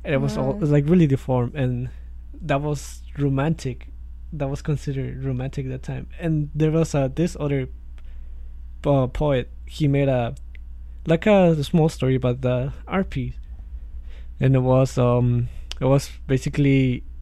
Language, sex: English, male